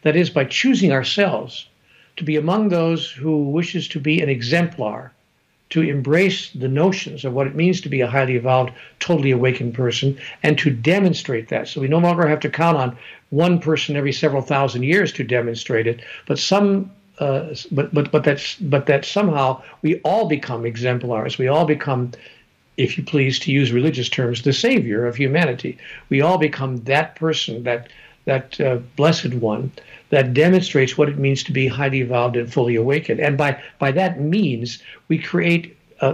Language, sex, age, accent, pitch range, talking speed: English, male, 60-79, American, 130-170 Hz, 185 wpm